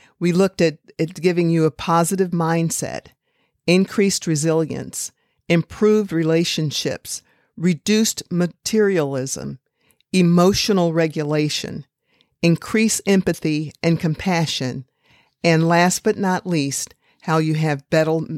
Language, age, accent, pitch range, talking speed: English, 50-69, American, 155-185 Hz, 100 wpm